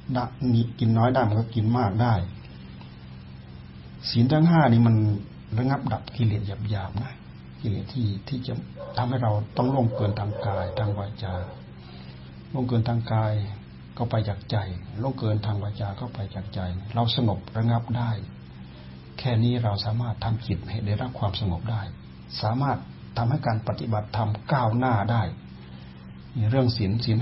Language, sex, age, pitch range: Thai, male, 60-79, 100-120 Hz